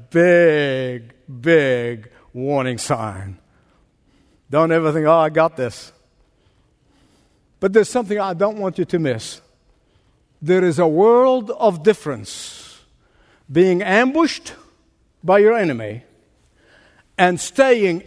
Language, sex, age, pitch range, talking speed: English, male, 60-79, 160-235 Hz, 110 wpm